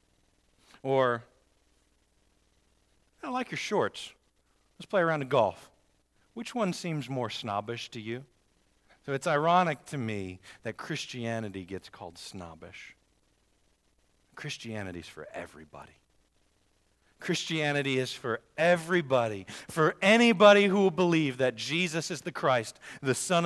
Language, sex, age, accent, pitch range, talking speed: English, male, 40-59, American, 100-145 Hz, 120 wpm